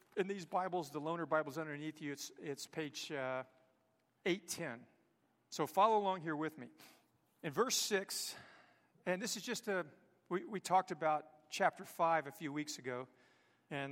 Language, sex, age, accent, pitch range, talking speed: English, male, 40-59, American, 155-215 Hz, 165 wpm